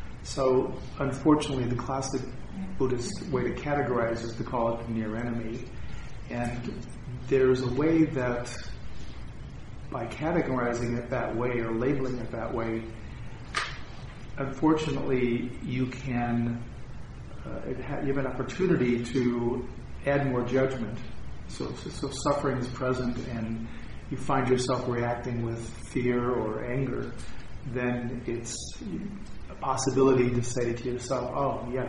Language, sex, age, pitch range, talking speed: English, male, 40-59, 115-130 Hz, 130 wpm